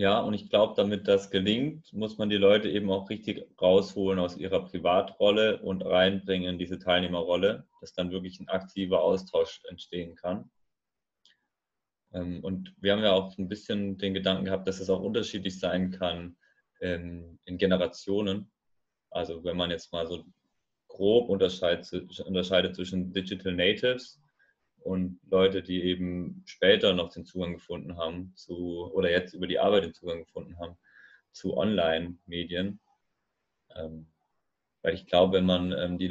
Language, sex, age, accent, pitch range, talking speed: German, male, 30-49, German, 90-100 Hz, 150 wpm